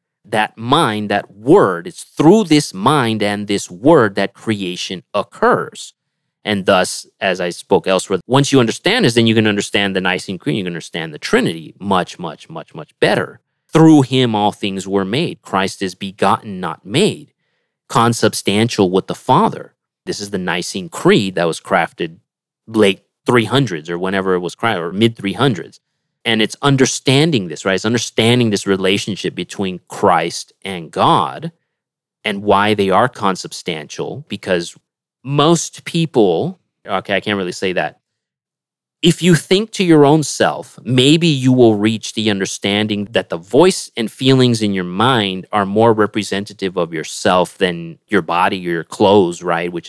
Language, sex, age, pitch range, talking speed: English, male, 30-49, 95-130 Hz, 160 wpm